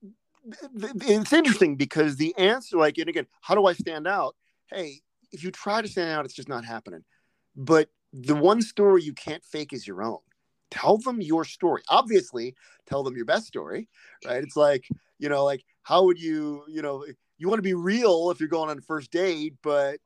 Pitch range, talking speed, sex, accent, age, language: 135-190 Hz, 205 wpm, male, American, 30-49, English